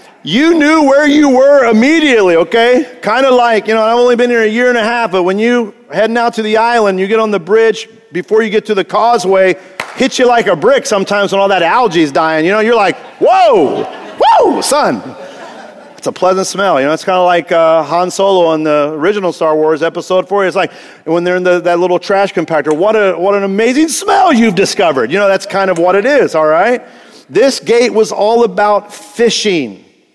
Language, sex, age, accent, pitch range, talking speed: English, male, 40-59, American, 180-240 Hz, 225 wpm